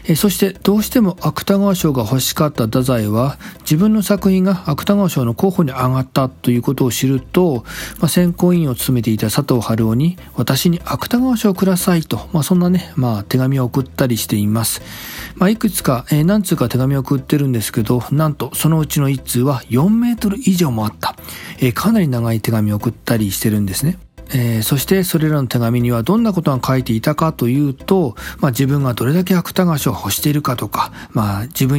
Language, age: Japanese, 40-59